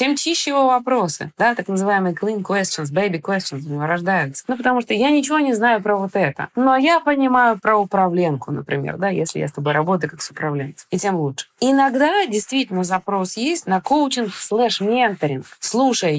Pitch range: 165-230 Hz